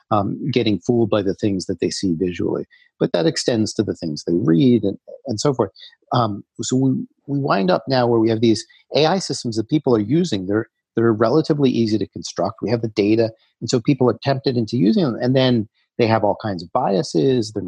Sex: male